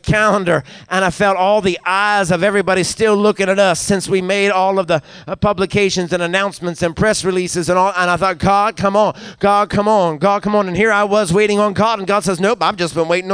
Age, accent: 50-69, American